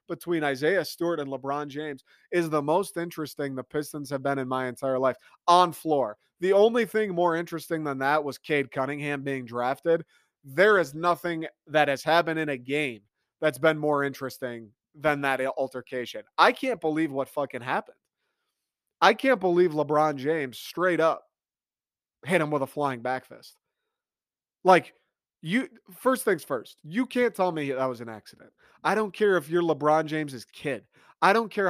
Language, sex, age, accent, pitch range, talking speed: English, male, 30-49, American, 135-175 Hz, 170 wpm